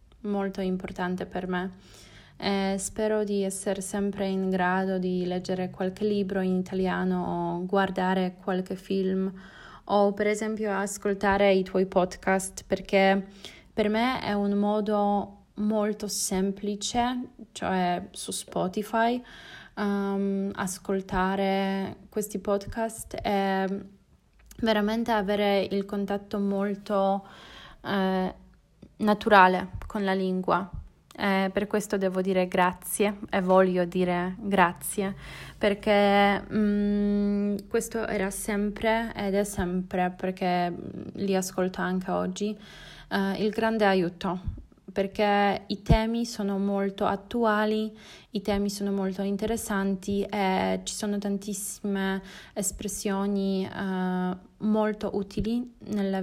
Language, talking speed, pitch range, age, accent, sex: Italian, 110 wpm, 190-205 Hz, 20-39, native, female